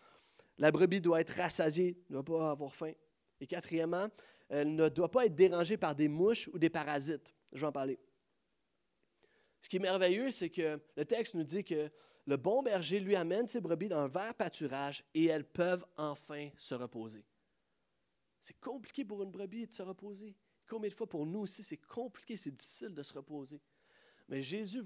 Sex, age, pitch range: male, 30-49, 165-215 Hz